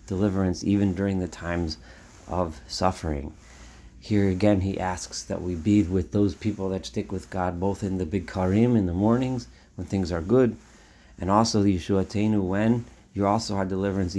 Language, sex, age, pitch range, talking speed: English, male, 40-59, 85-105 Hz, 180 wpm